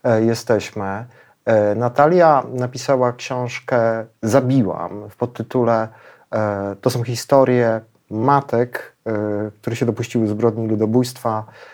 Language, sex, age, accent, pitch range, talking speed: Polish, male, 40-59, native, 110-130 Hz, 80 wpm